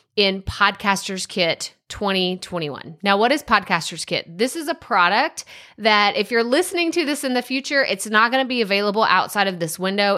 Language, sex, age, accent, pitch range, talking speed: English, female, 30-49, American, 190-245 Hz, 185 wpm